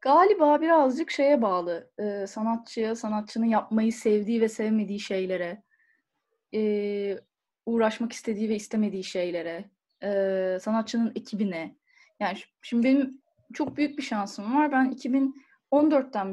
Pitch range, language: 215-290 Hz, Turkish